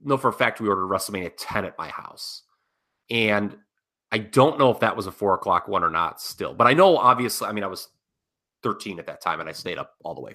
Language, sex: English, male